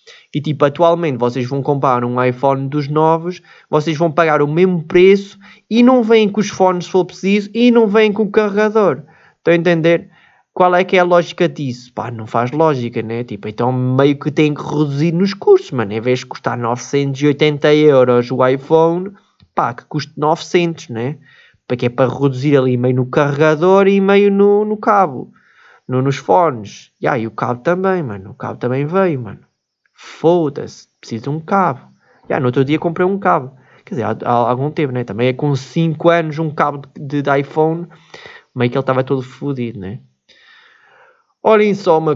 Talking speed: 190 wpm